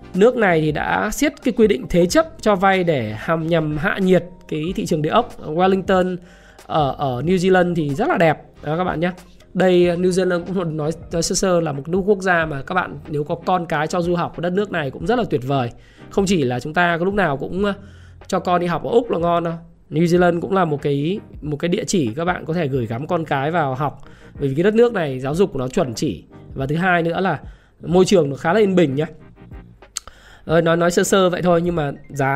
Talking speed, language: 260 wpm, Vietnamese